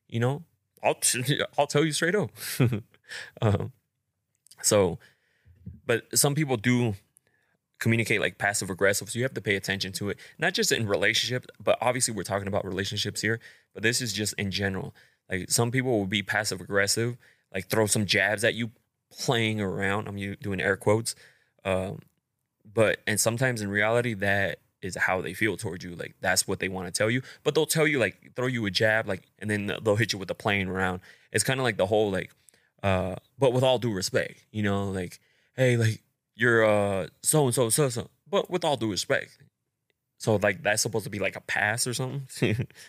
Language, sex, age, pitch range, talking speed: English, male, 20-39, 100-125 Hz, 200 wpm